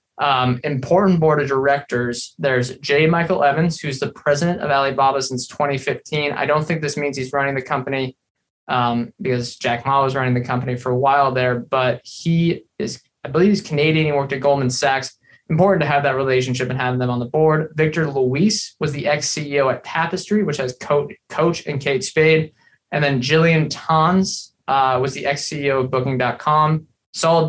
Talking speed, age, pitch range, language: 185 wpm, 20-39, 135-155 Hz, English